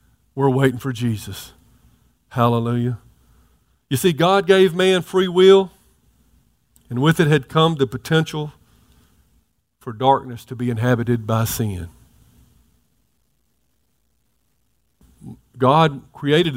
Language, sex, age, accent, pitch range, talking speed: English, male, 50-69, American, 120-150 Hz, 100 wpm